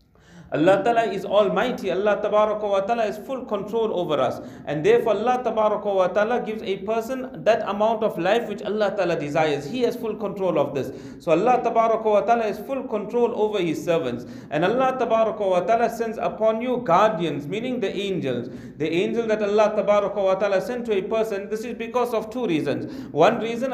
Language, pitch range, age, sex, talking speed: English, 195-235 Hz, 40-59, male, 155 wpm